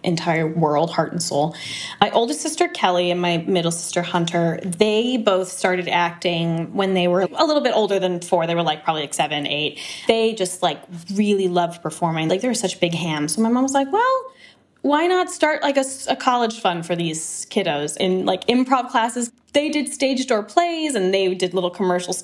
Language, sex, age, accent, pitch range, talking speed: English, female, 10-29, American, 180-275 Hz, 210 wpm